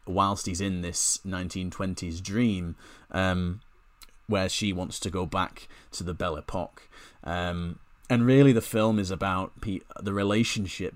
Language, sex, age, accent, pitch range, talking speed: English, male, 30-49, British, 85-100 Hz, 140 wpm